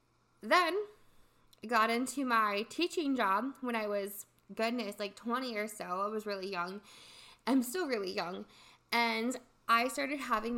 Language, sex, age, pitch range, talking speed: English, female, 20-39, 200-250 Hz, 155 wpm